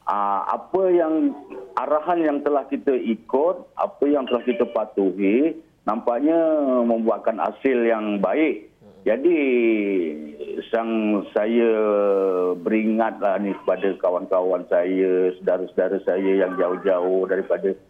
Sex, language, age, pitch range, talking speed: male, Malay, 50-69, 95-120 Hz, 105 wpm